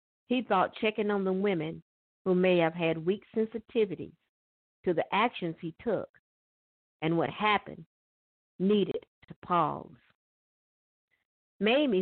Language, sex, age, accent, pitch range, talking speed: English, female, 50-69, American, 160-210 Hz, 120 wpm